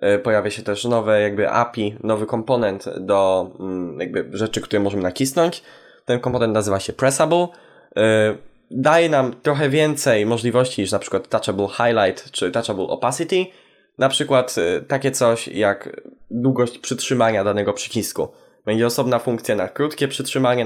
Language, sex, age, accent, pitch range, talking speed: Polish, male, 10-29, native, 105-135 Hz, 130 wpm